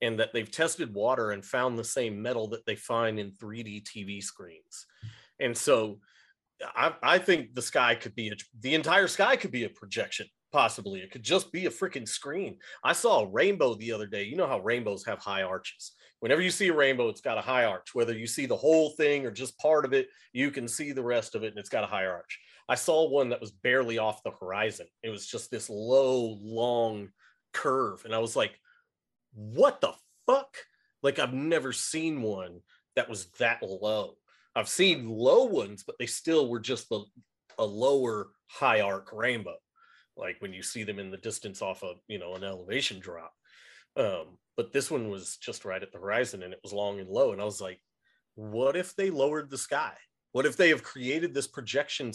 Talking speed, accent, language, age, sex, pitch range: 215 wpm, American, English, 30-49, male, 105-150 Hz